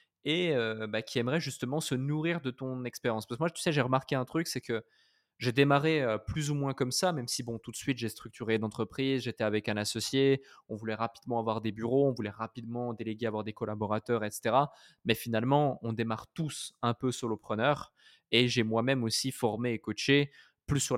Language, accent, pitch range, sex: French, French, 110-135 Hz, male